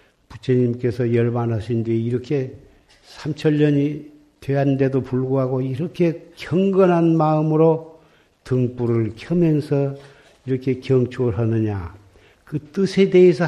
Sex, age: male, 50-69